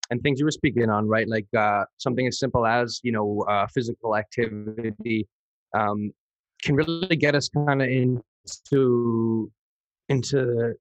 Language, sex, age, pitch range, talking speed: English, male, 20-39, 110-130 Hz, 150 wpm